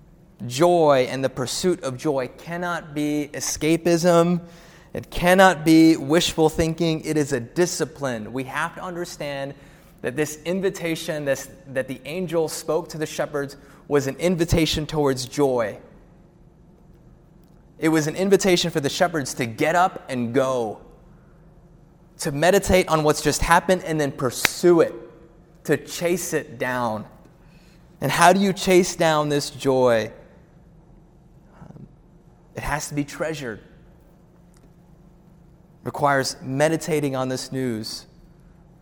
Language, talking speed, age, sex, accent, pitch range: English, 130 wpm, 20-39, male, American, 135-170 Hz